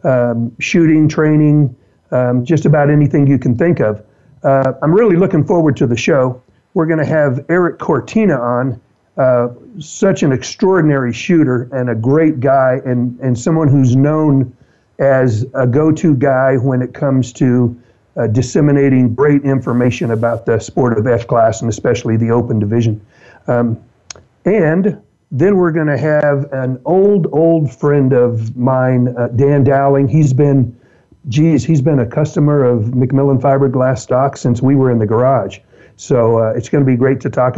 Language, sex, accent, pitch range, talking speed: English, male, American, 120-145 Hz, 165 wpm